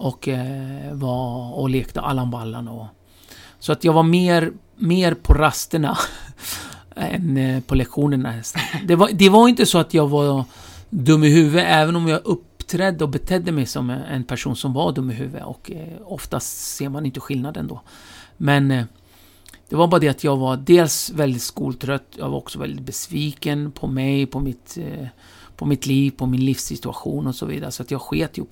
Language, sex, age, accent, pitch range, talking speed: Swedish, male, 50-69, native, 120-155 Hz, 175 wpm